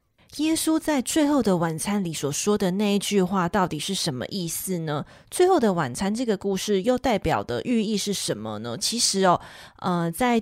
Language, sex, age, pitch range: Chinese, female, 20-39, 175-220 Hz